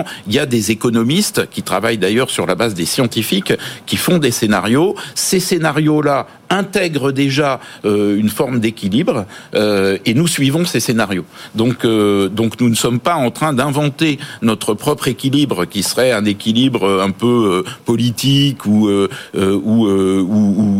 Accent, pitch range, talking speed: French, 105-145 Hz, 170 wpm